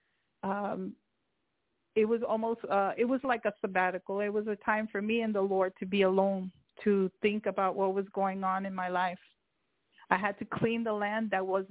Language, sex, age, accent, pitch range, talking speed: English, female, 40-59, American, 195-215 Hz, 205 wpm